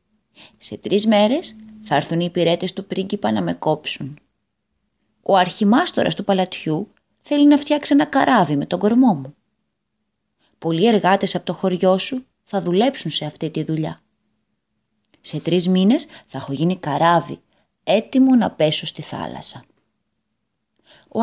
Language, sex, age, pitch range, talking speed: Greek, female, 20-39, 160-220 Hz, 140 wpm